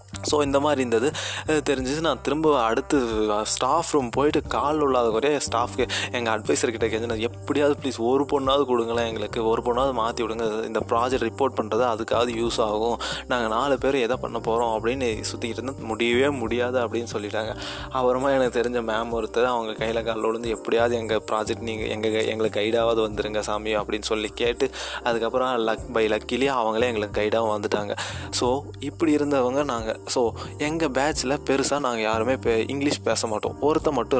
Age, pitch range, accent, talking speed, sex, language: 20-39, 110-135 Hz, native, 160 wpm, male, Tamil